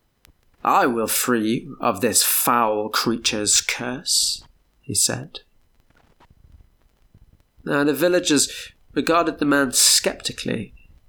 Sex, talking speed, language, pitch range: male, 95 wpm, English, 100-135 Hz